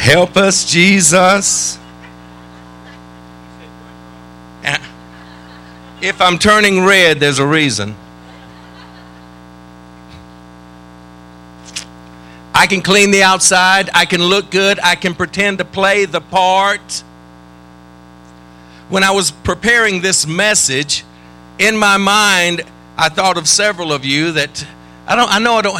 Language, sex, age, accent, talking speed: English, male, 50-69, American, 110 wpm